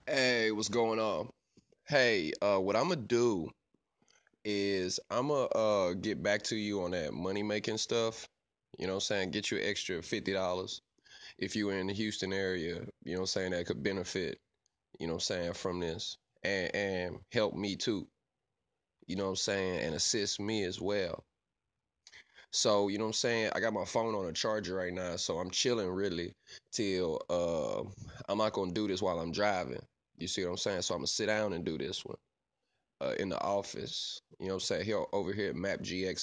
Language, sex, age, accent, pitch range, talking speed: English, male, 20-39, American, 95-110 Hz, 215 wpm